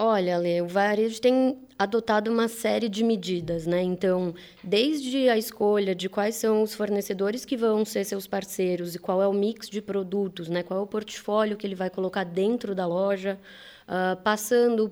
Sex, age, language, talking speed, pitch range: female, 20-39, Portuguese, 180 wpm, 185-230 Hz